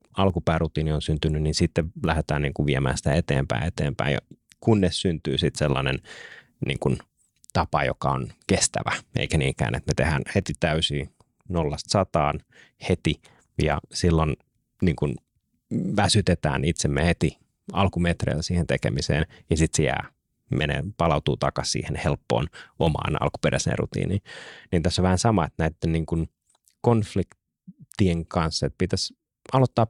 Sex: male